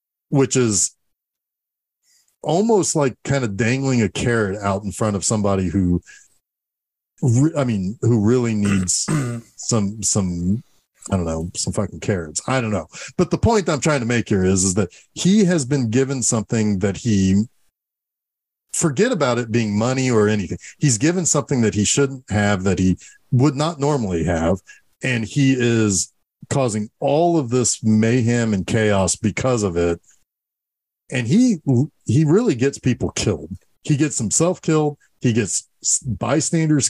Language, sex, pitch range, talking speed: English, male, 105-140 Hz, 155 wpm